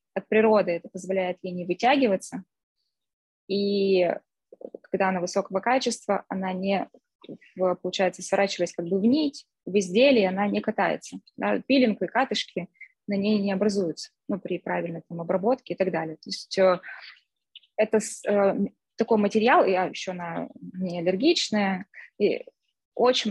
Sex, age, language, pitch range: female, 20-39, Russian, 190-230 Hz